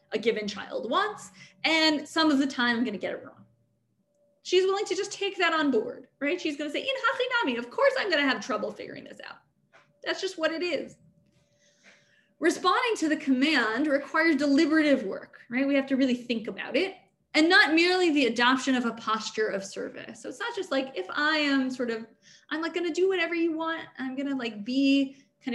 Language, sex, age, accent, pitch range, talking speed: English, female, 20-39, American, 220-305 Hz, 220 wpm